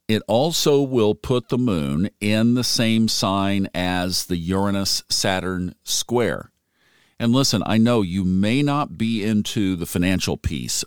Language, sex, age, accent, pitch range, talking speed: English, male, 50-69, American, 85-115 Hz, 145 wpm